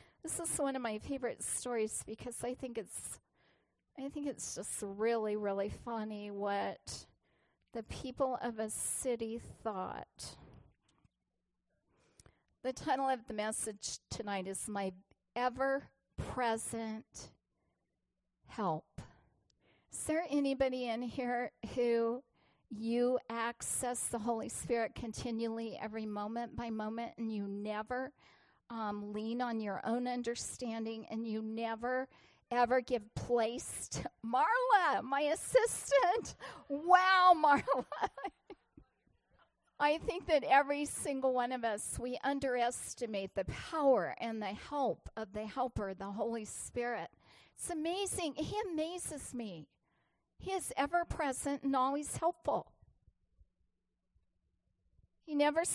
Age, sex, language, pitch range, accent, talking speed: 40-59, female, English, 220-280 Hz, American, 115 wpm